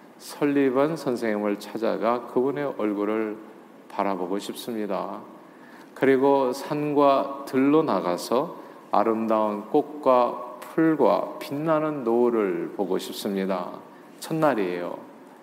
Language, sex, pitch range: Korean, male, 105-140 Hz